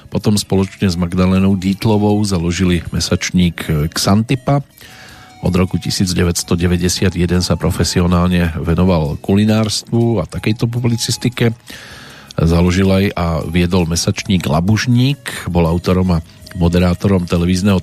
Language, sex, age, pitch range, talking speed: Slovak, male, 40-59, 90-105 Hz, 100 wpm